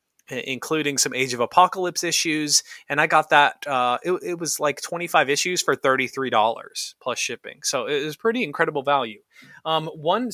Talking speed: 170 wpm